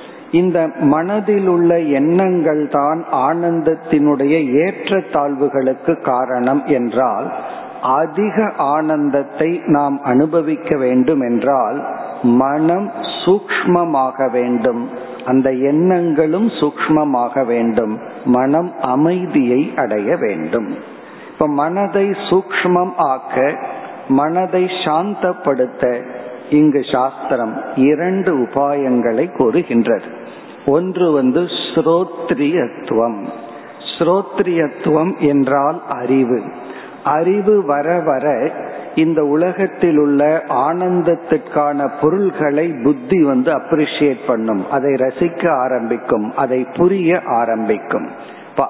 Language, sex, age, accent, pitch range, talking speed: Tamil, male, 50-69, native, 135-175 Hz, 75 wpm